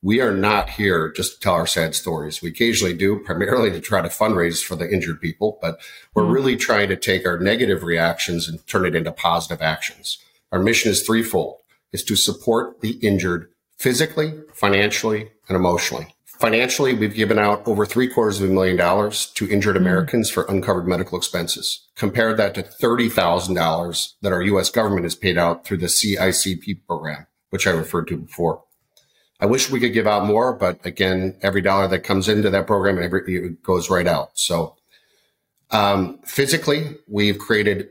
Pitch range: 90-110 Hz